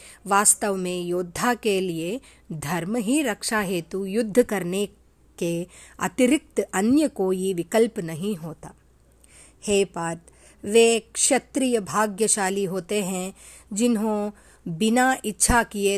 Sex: female